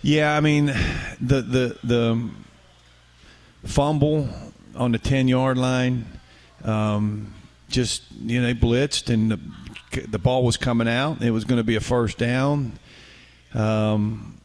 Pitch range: 100-115 Hz